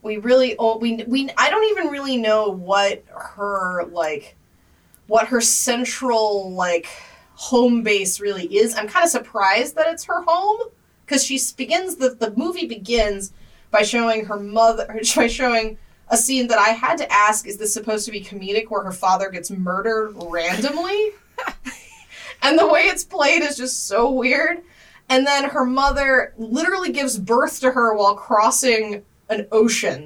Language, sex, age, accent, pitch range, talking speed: English, female, 20-39, American, 200-275 Hz, 165 wpm